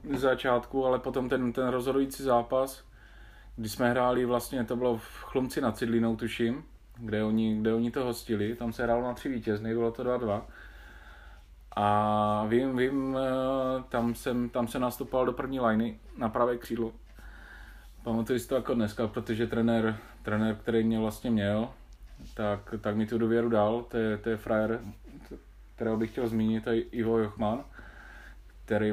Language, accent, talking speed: Czech, native, 165 wpm